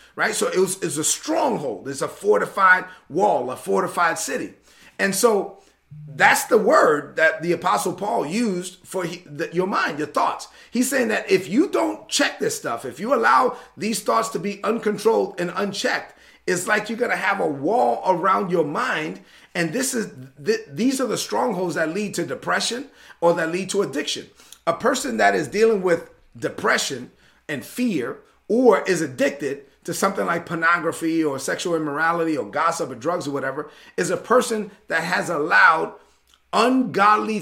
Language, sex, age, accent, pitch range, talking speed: English, male, 30-49, American, 170-230 Hz, 175 wpm